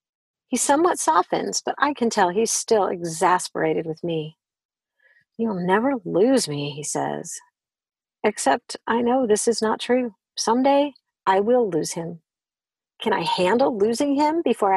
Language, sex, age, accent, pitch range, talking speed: English, female, 50-69, American, 190-265 Hz, 145 wpm